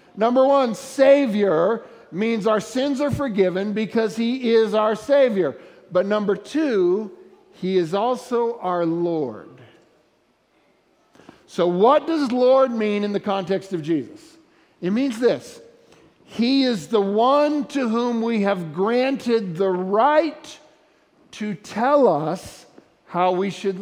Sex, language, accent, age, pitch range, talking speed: male, English, American, 50-69, 185-245 Hz, 130 wpm